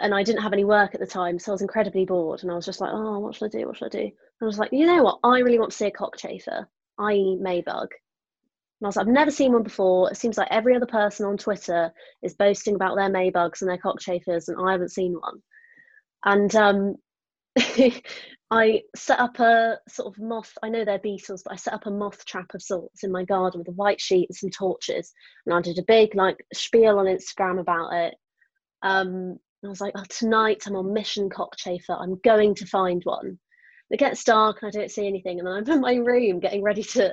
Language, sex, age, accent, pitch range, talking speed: English, female, 20-39, British, 195-245 Hz, 240 wpm